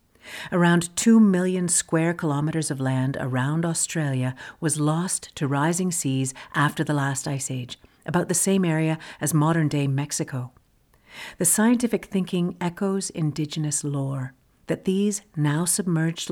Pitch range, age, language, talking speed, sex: 140-180 Hz, 50-69, English, 130 wpm, female